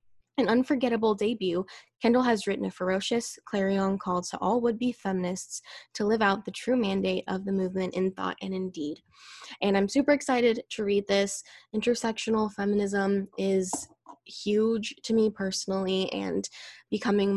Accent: American